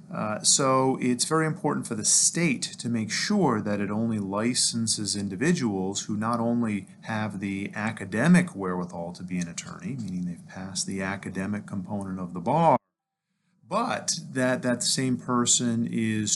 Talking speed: 155 wpm